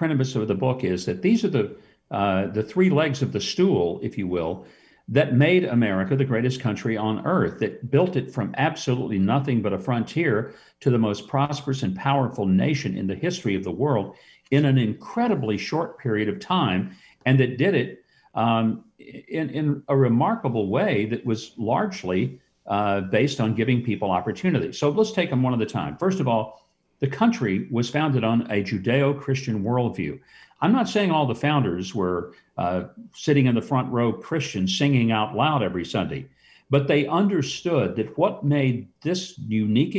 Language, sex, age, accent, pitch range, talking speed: English, male, 50-69, American, 110-150 Hz, 180 wpm